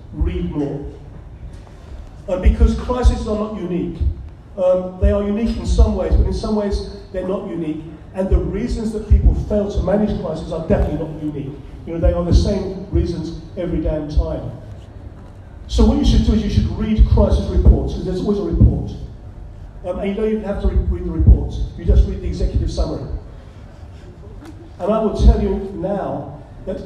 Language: English